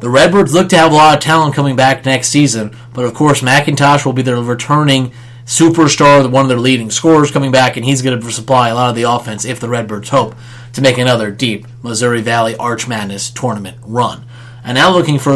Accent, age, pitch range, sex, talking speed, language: American, 30-49, 120-145 Hz, male, 225 wpm, English